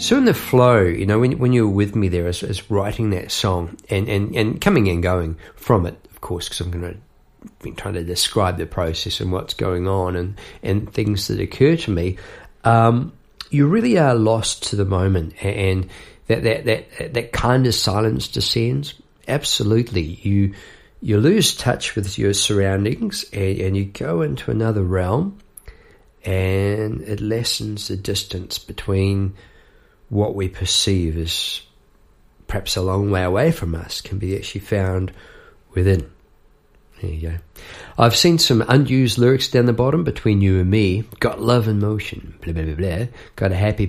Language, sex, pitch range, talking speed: English, male, 95-115 Hz, 175 wpm